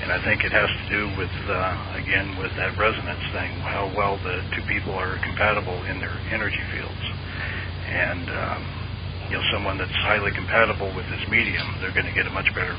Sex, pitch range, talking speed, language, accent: male, 95-105 Hz, 200 wpm, English, American